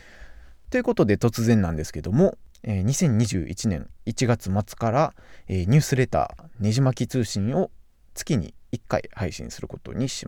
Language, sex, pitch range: Japanese, male, 95-160 Hz